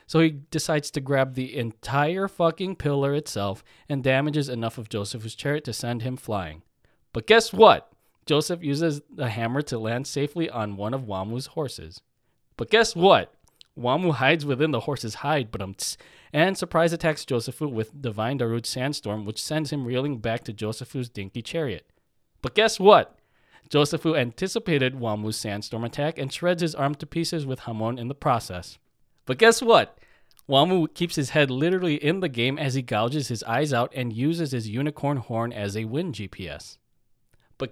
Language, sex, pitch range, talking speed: English, male, 115-160 Hz, 170 wpm